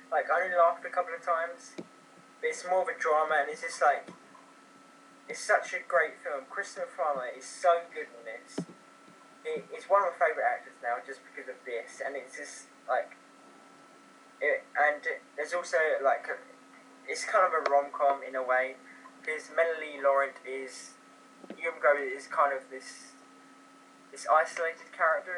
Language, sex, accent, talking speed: English, male, British, 175 wpm